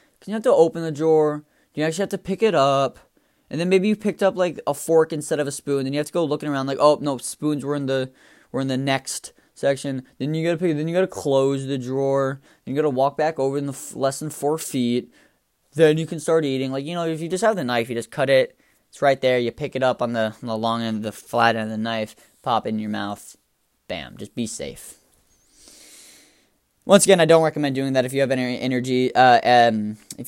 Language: English